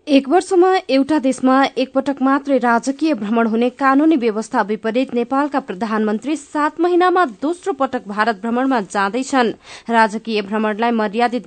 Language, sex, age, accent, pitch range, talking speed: English, female, 20-39, Indian, 220-275 Hz, 135 wpm